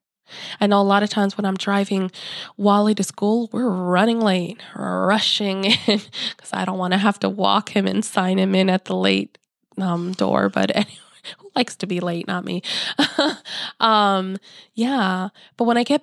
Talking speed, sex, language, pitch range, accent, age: 185 wpm, female, English, 185-210 Hz, American, 20-39